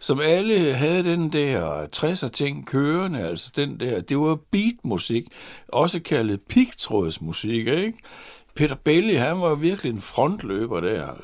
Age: 60-79